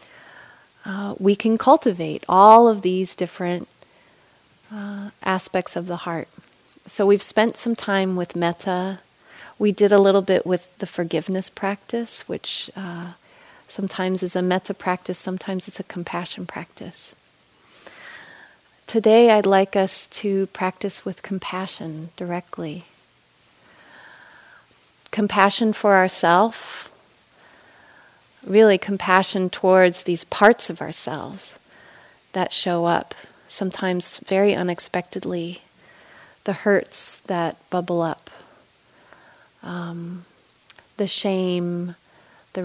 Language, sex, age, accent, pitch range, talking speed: English, female, 30-49, American, 175-200 Hz, 105 wpm